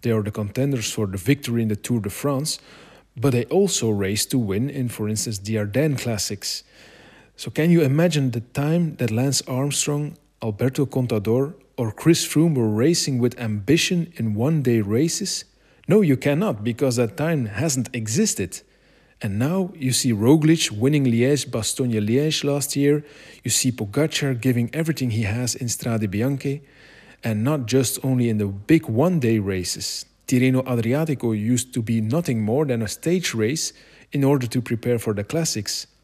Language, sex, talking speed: English, male, 165 wpm